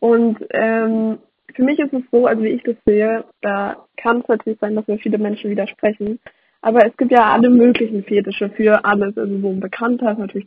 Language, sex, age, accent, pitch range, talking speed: German, female, 20-39, German, 210-245 Hz, 210 wpm